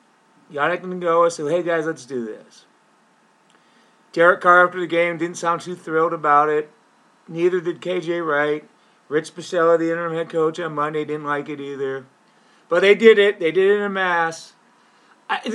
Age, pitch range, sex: 40-59, 150-195 Hz, male